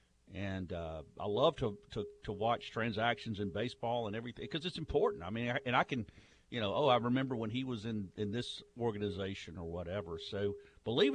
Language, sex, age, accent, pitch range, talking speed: English, male, 50-69, American, 105-135 Hz, 205 wpm